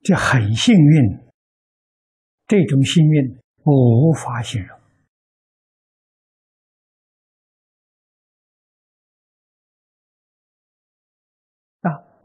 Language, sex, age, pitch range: Chinese, male, 60-79, 125-205 Hz